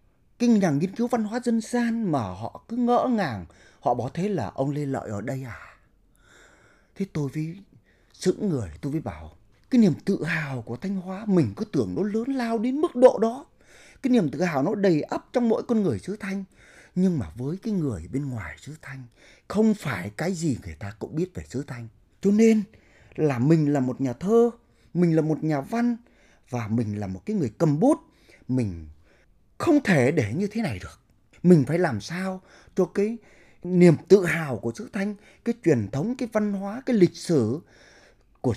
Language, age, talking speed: Vietnamese, 30-49, 200 wpm